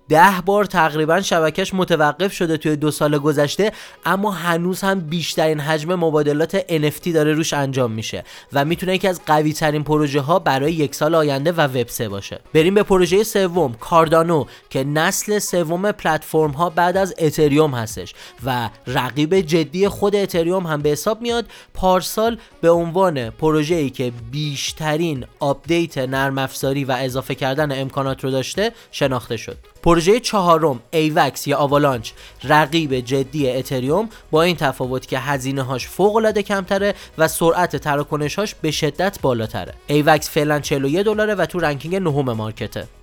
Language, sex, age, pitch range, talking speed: Persian, male, 20-39, 135-180 Hz, 150 wpm